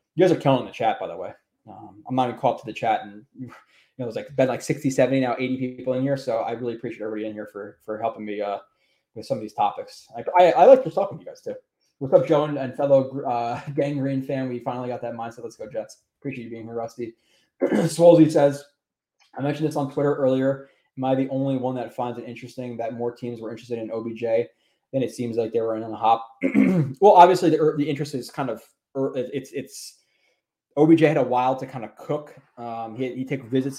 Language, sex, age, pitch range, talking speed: English, male, 20-39, 115-140 Hz, 250 wpm